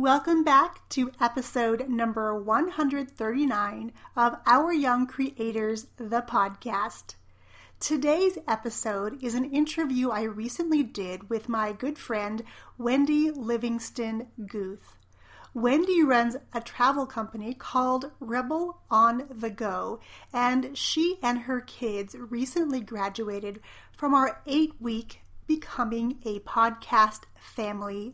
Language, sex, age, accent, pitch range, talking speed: English, female, 40-59, American, 225-280 Hz, 110 wpm